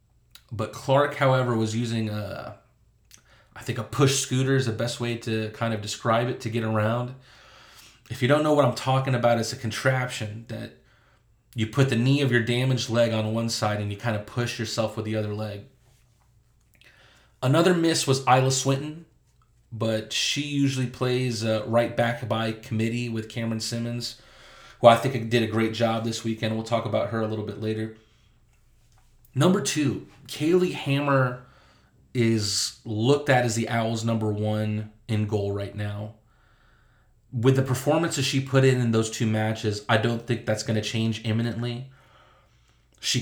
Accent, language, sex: American, English, male